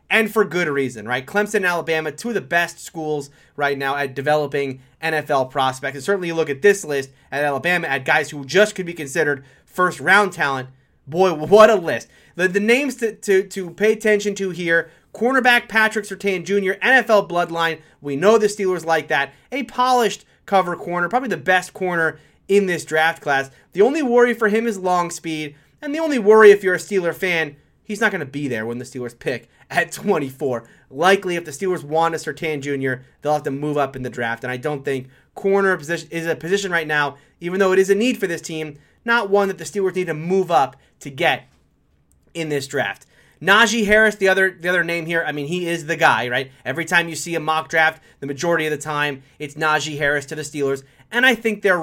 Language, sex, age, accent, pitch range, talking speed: English, male, 30-49, American, 145-195 Hz, 220 wpm